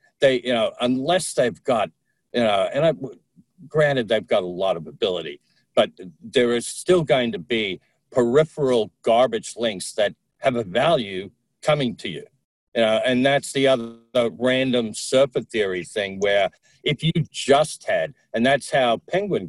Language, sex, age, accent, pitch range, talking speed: English, male, 50-69, American, 110-140 Hz, 165 wpm